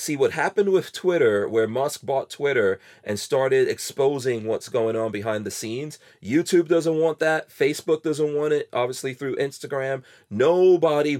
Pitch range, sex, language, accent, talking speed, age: 115-160 Hz, male, English, American, 160 wpm, 30-49